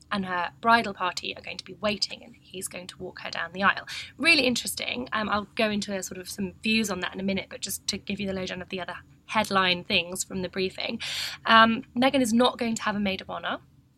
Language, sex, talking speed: English, female, 260 wpm